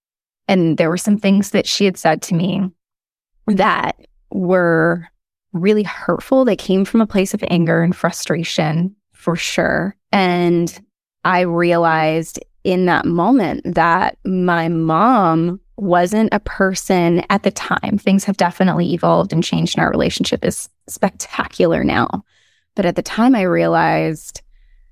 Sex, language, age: female, English, 20-39